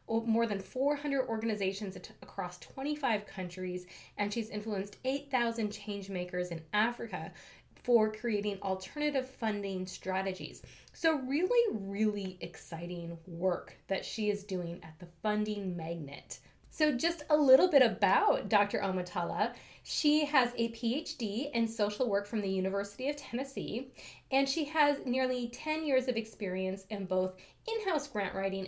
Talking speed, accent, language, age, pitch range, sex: 135 wpm, American, English, 20-39, 190-260 Hz, female